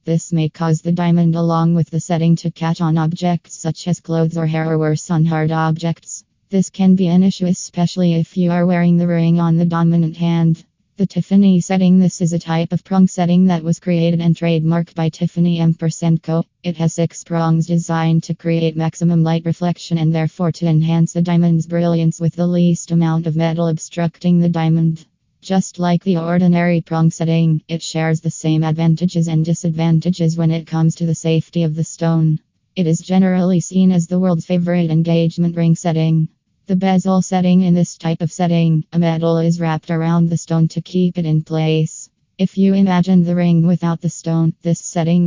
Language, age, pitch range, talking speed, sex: English, 20-39, 165-175 Hz, 195 wpm, female